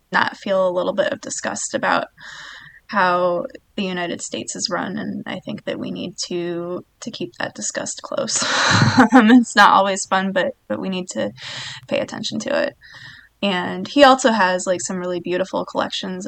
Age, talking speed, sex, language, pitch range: 20-39, 180 wpm, female, English, 180-225 Hz